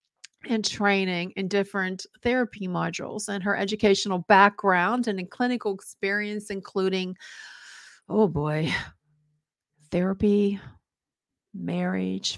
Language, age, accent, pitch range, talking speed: English, 50-69, American, 190-225 Hz, 90 wpm